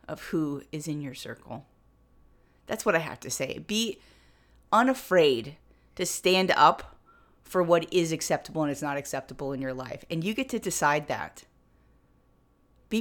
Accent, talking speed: American, 160 wpm